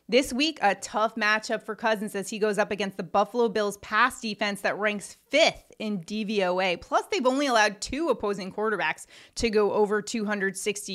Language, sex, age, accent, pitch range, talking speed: English, female, 30-49, American, 195-245 Hz, 180 wpm